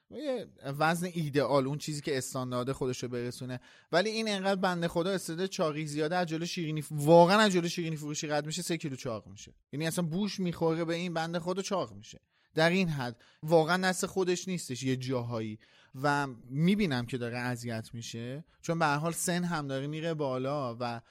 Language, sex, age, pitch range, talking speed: Persian, male, 30-49, 120-155 Hz, 190 wpm